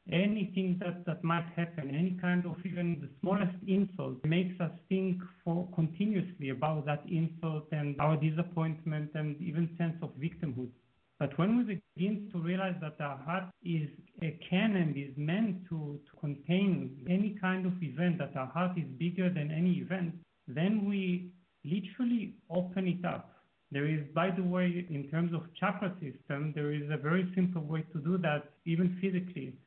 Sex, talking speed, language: male, 170 wpm, English